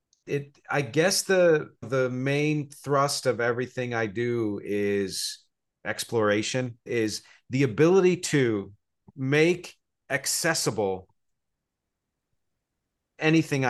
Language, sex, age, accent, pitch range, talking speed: English, male, 40-59, American, 115-145 Hz, 90 wpm